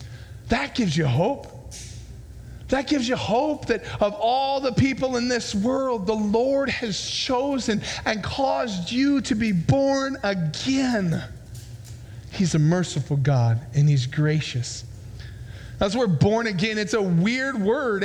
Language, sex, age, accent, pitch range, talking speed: English, male, 40-59, American, 160-235 Hz, 140 wpm